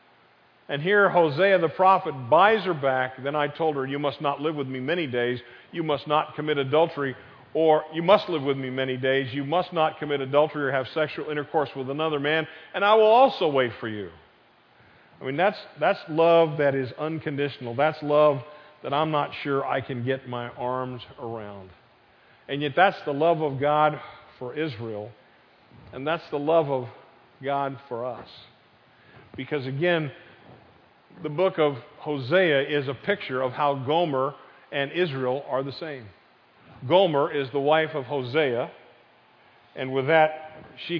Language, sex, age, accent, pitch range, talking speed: English, male, 50-69, American, 135-160 Hz, 170 wpm